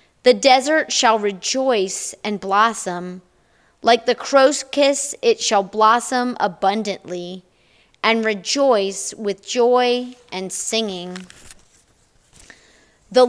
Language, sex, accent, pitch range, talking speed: English, female, American, 200-260 Hz, 95 wpm